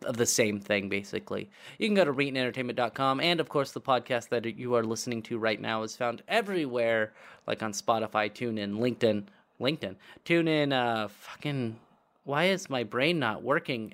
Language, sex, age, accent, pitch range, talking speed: English, male, 30-49, American, 115-160 Hz, 180 wpm